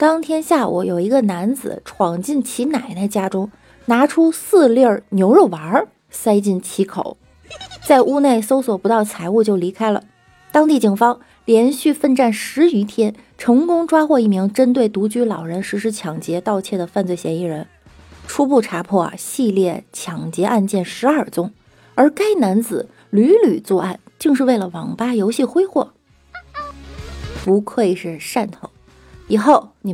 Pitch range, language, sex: 180-245 Hz, Chinese, female